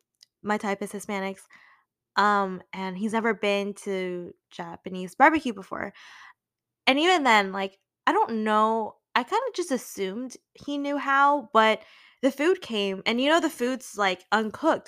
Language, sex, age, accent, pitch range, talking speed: English, female, 10-29, American, 200-280 Hz, 155 wpm